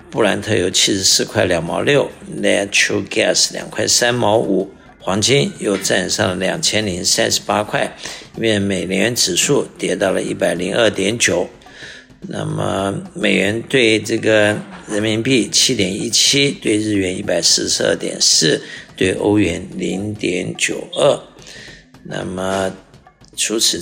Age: 60-79